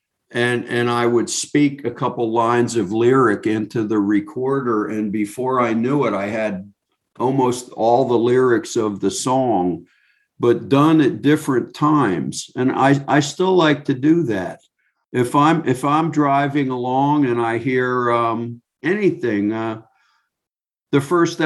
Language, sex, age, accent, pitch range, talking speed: English, male, 50-69, American, 110-140 Hz, 150 wpm